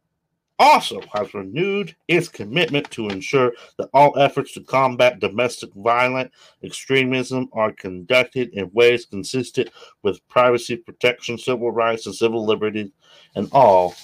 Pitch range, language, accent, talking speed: 100-135 Hz, English, American, 130 wpm